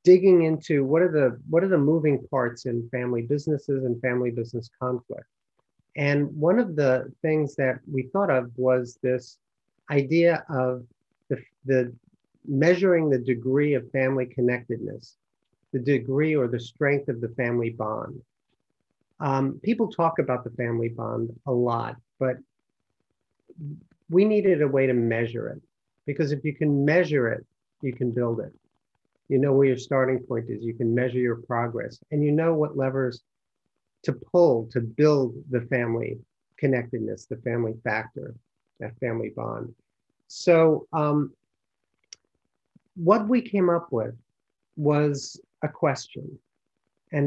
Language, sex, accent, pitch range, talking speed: English, male, American, 125-150 Hz, 145 wpm